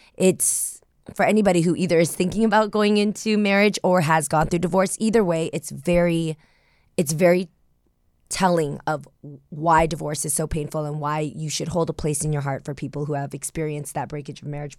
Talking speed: 195 wpm